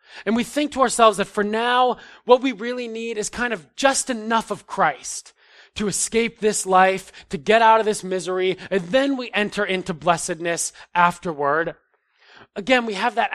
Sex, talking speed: male, 180 wpm